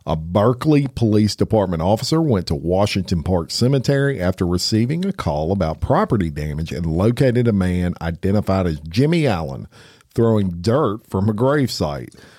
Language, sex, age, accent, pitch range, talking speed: English, male, 50-69, American, 90-120 Hz, 150 wpm